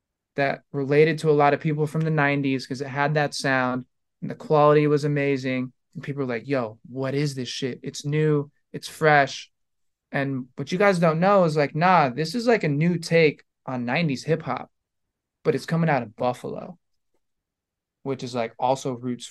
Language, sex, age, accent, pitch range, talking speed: English, male, 20-39, American, 125-150 Hz, 195 wpm